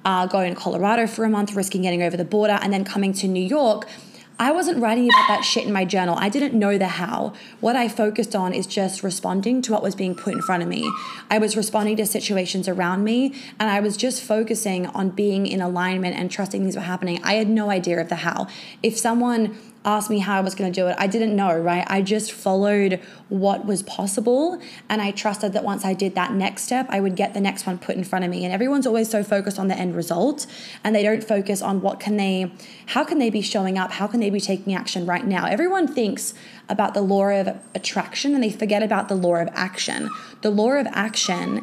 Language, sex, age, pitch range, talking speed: English, female, 20-39, 190-225 Hz, 240 wpm